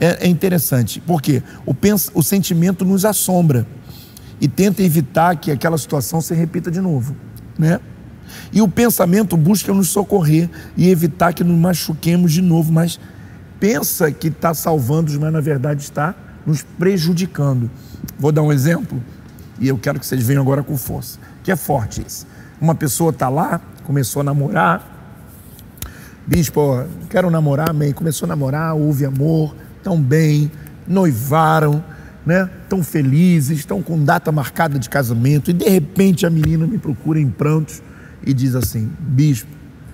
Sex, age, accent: male, 50-69, Brazilian